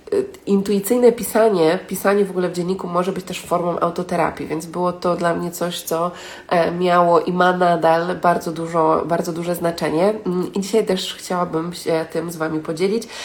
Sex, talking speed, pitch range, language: female, 170 wpm, 170-200 Hz, Polish